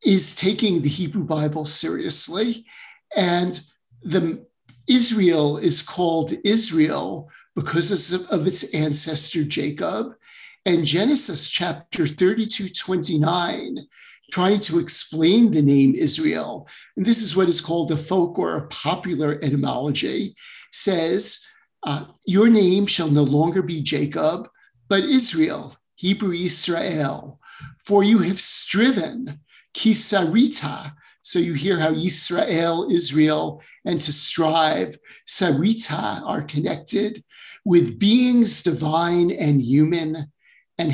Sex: male